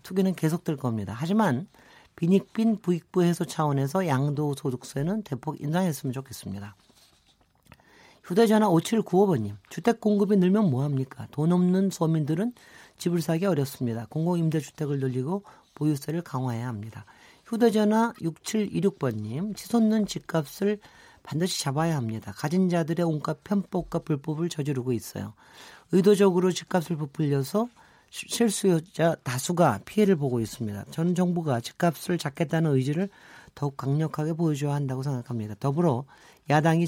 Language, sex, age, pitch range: Korean, male, 40-59, 140-190 Hz